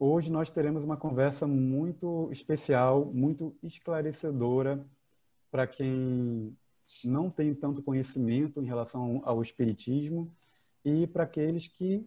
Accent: Brazilian